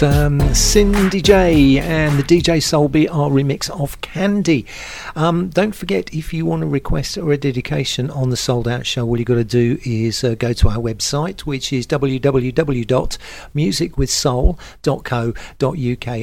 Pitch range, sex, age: 125-155 Hz, male, 50-69